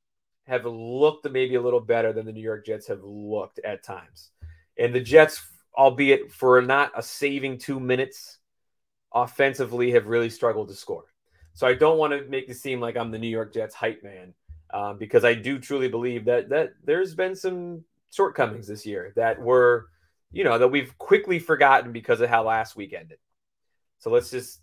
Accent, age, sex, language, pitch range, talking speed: American, 30-49, male, English, 110-145 Hz, 190 wpm